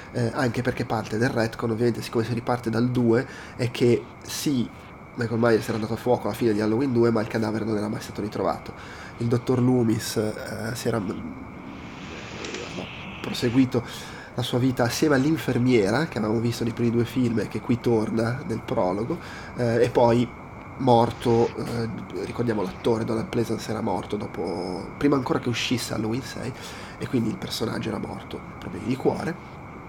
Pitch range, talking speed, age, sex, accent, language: 115-125 Hz, 175 wpm, 20-39, male, native, Italian